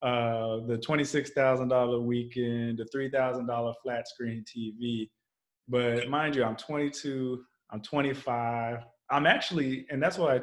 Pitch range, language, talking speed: 115-140 Hz, English, 125 wpm